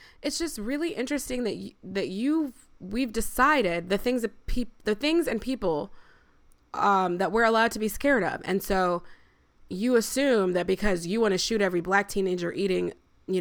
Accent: American